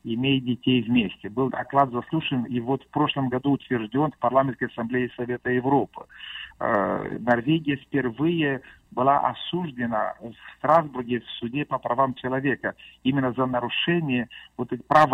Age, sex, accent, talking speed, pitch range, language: 50-69, male, native, 135 wpm, 125-140 Hz, Russian